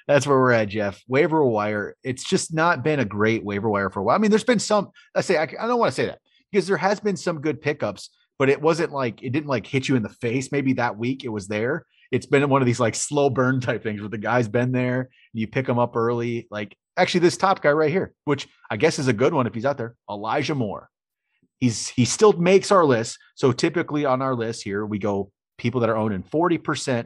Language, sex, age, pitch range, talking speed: English, male, 30-49, 105-150 Hz, 255 wpm